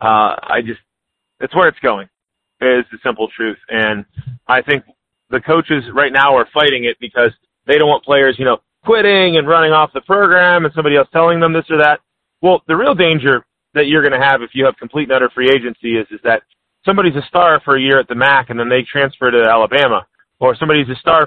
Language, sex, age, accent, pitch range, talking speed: English, male, 30-49, American, 125-160 Hz, 230 wpm